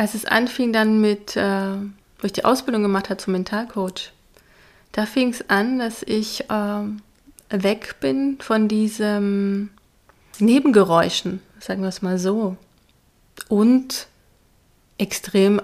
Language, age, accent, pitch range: German, 30-49, German, 190-220 Hz